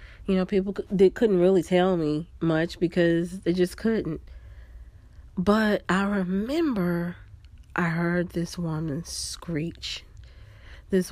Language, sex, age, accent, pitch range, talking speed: English, female, 40-59, American, 155-180 Hz, 115 wpm